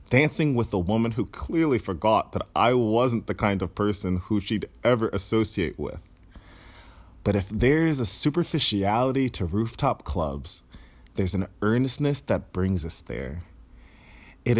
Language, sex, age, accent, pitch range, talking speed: English, male, 30-49, American, 85-120 Hz, 150 wpm